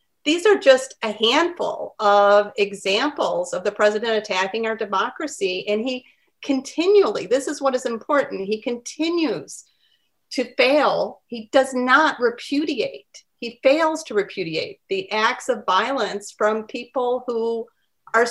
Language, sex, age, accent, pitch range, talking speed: English, female, 50-69, American, 225-310 Hz, 135 wpm